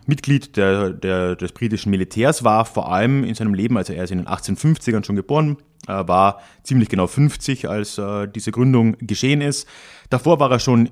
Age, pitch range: 30-49, 90-130 Hz